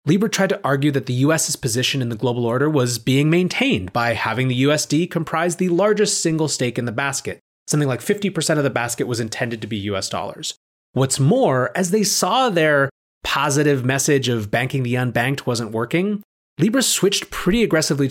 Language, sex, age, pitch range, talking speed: English, male, 30-49, 120-170 Hz, 190 wpm